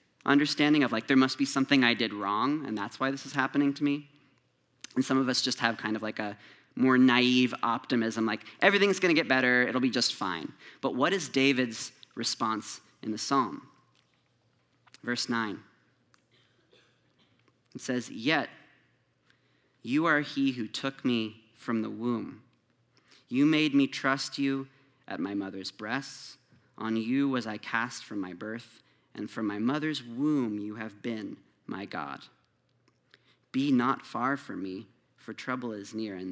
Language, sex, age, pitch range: English, male, 30-49, 110-135 Hz